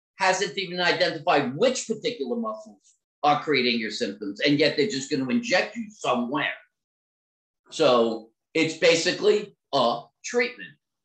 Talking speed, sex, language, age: 125 wpm, male, English, 50-69